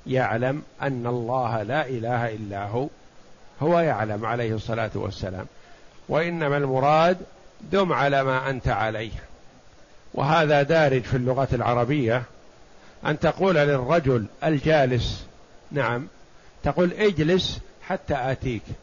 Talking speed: 105 wpm